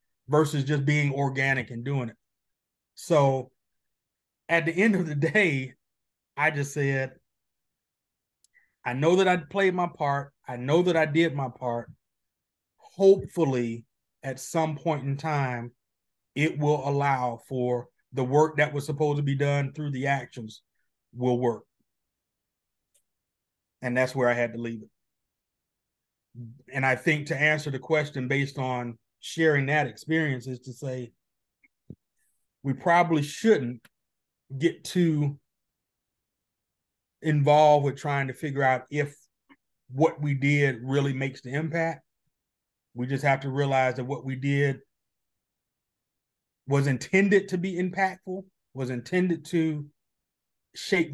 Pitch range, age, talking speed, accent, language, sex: 130-155 Hz, 30-49, 135 wpm, American, English, male